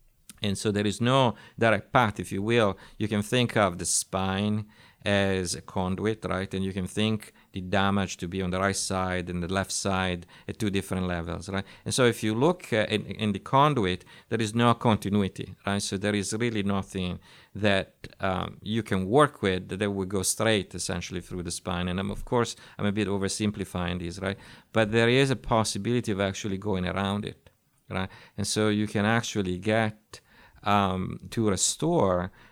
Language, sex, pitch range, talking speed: English, male, 95-110 Hz, 190 wpm